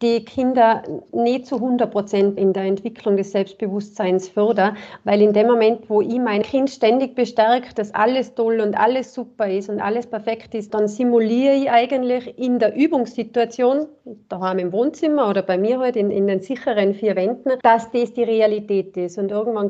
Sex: female